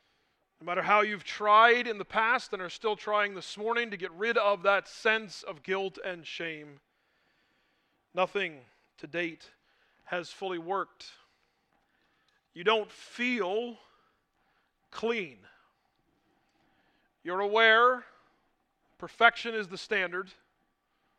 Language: English